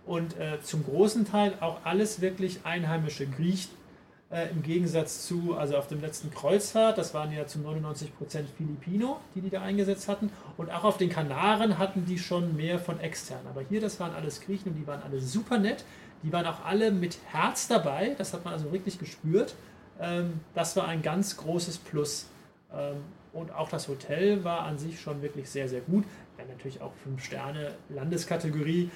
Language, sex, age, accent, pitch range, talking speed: German, male, 30-49, German, 145-185 Hz, 190 wpm